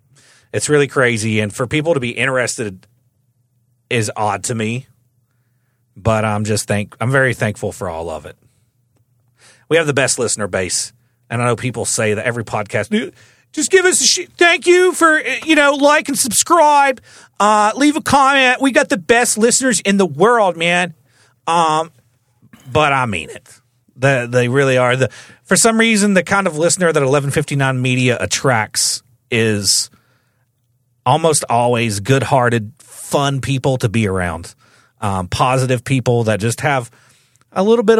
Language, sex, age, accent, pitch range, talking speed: English, male, 40-59, American, 120-165 Hz, 165 wpm